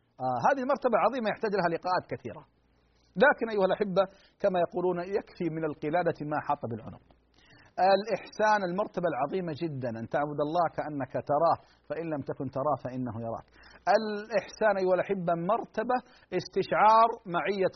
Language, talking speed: Arabic, 135 wpm